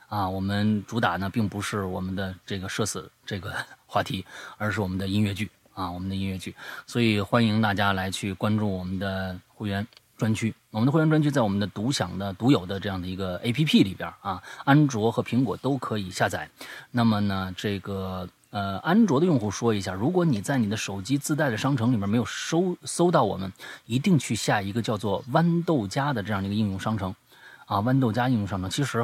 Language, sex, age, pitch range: Chinese, male, 30-49, 100-130 Hz